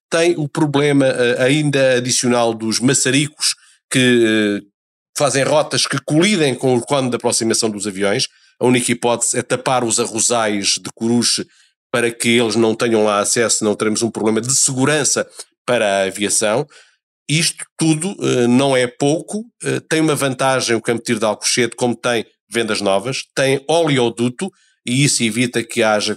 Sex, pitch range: male, 115-140 Hz